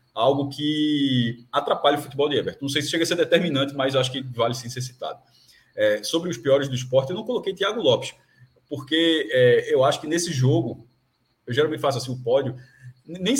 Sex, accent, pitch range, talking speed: male, Brazilian, 130-170 Hz, 205 wpm